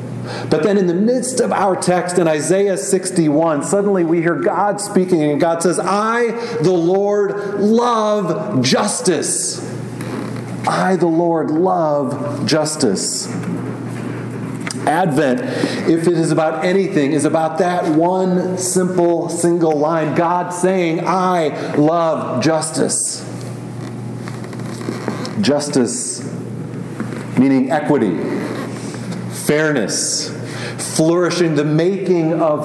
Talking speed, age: 100 wpm, 40-59